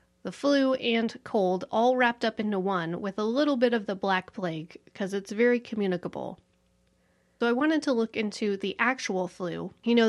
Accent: American